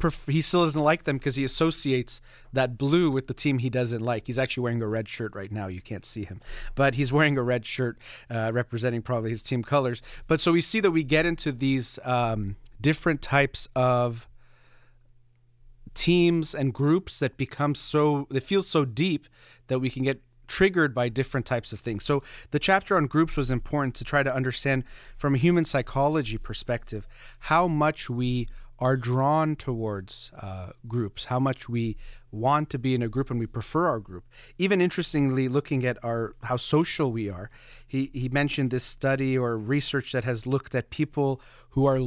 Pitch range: 120-145 Hz